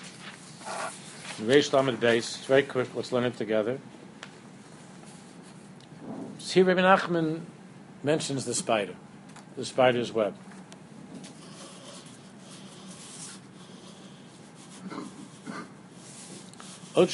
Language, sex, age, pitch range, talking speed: English, male, 60-79, 140-190 Hz, 65 wpm